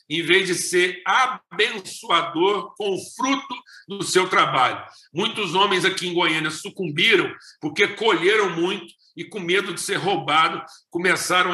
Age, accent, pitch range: 50-69, Brazilian, 165-205 Hz